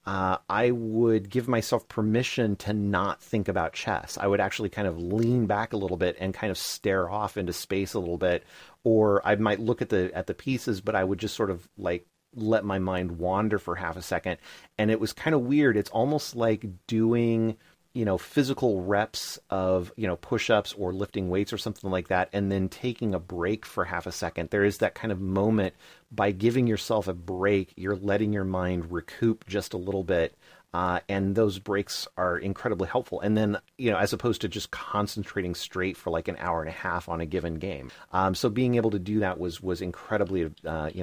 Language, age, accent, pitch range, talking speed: English, 30-49, American, 95-115 Hz, 215 wpm